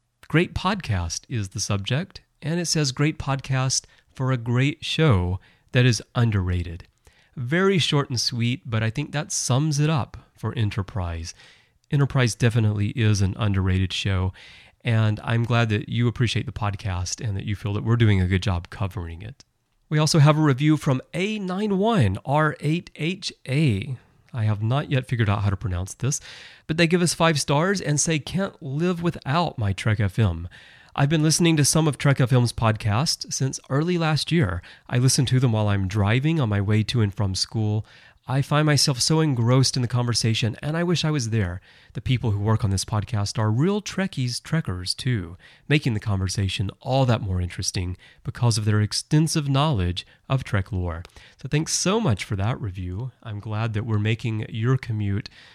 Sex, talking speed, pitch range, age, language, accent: male, 185 wpm, 105-140 Hz, 30-49, English, American